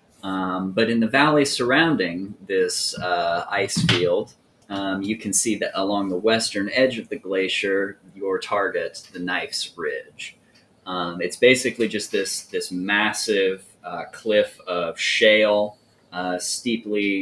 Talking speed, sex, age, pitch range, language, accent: 140 wpm, male, 30-49, 95-135 Hz, English, American